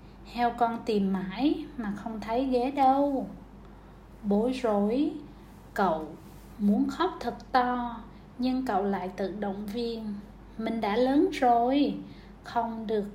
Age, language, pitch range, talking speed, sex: 20-39, Vietnamese, 210-265 Hz, 130 wpm, female